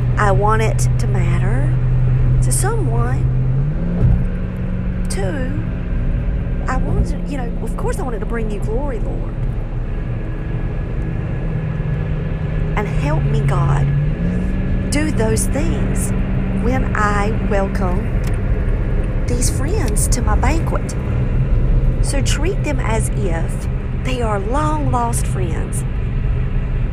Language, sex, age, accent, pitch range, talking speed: English, female, 40-59, American, 115-135 Hz, 105 wpm